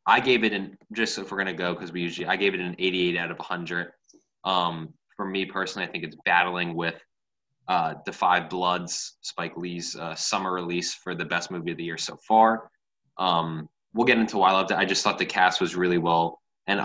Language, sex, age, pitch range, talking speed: English, male, 10-29, 85-105 Hz, 230 wpm